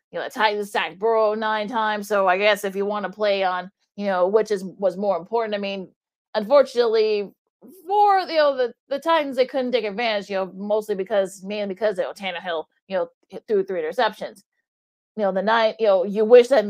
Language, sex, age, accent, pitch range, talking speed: English, female, 30-49, American, 195-225 Hz, 210 wpm